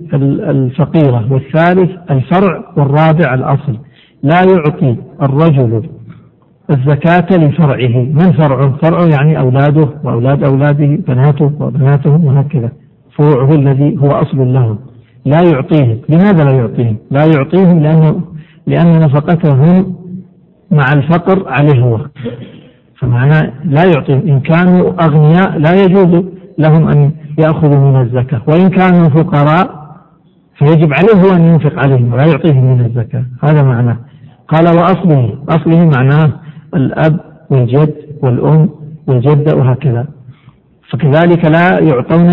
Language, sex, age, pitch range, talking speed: Arabic, male, 60-79, 140-165 Hz, 110 wpm